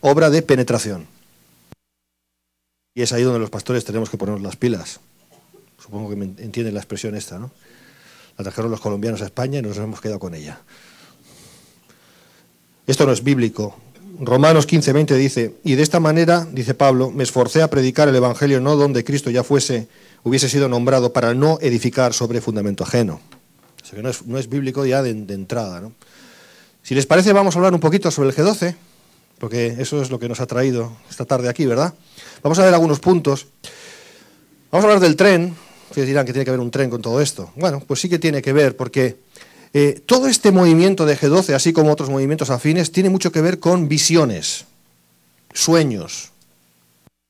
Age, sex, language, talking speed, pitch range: 40-59, male, English, 190 wpm, 110-155 Hz